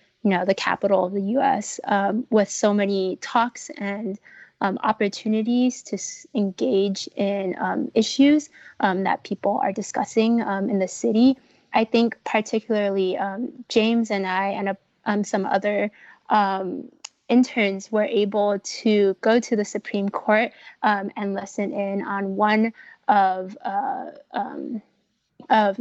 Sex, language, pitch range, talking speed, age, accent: female, English, 200-230 Hz, 145 wpm, 20-39, American